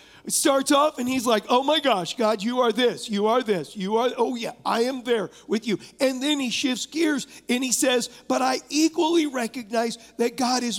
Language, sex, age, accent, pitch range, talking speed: English, male, 40-59, American, 215-270 Hz, 220 wpm